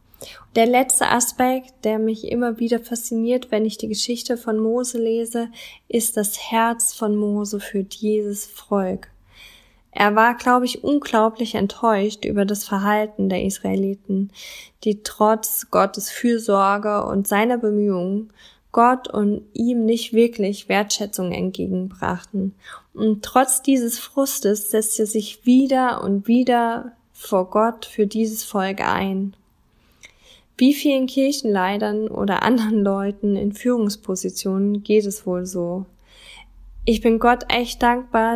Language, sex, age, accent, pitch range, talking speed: German, female, 10-29, German, 205-235 Hz, 125 wpm